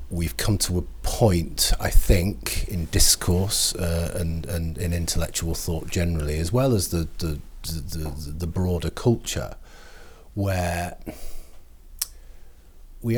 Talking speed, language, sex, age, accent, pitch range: 125 wpm, English, male, 40-59, British, 75-100 Hz